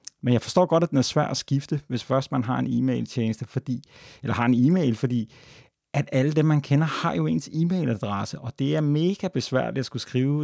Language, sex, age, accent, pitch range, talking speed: Danish, male, 30-49, native, 115-135 Hz, 235 wpm